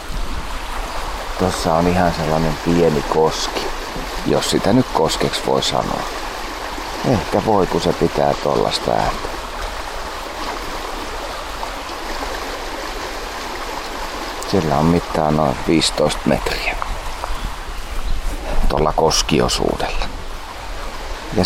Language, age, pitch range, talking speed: Finnish, 40-59, 75-85 Hz, 75 wpm